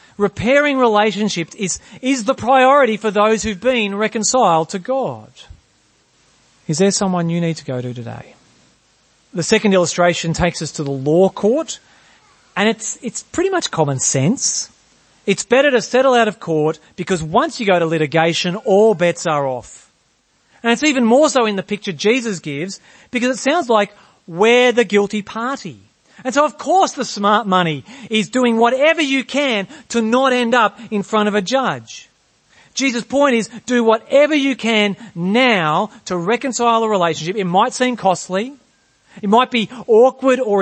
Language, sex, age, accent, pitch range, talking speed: English, male, 40-59, Australian, 180-245 Hz, 170 wpm